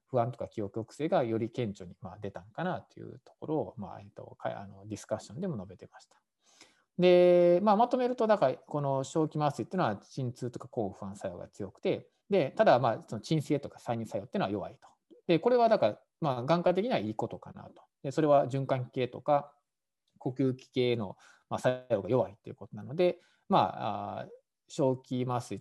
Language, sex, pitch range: Japanese, male, 110-165 Hz